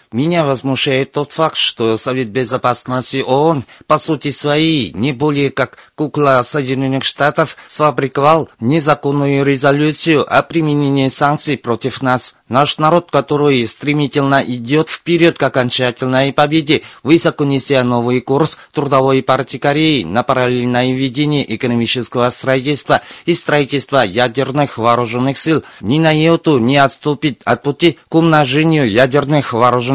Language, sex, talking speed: Russian, male, 125 wpm